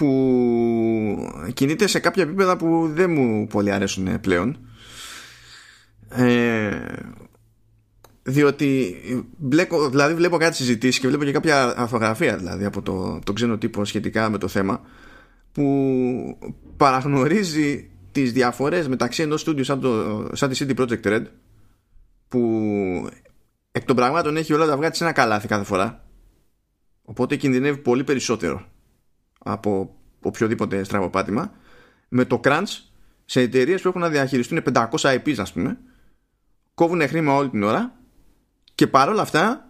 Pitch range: 110-145 Hz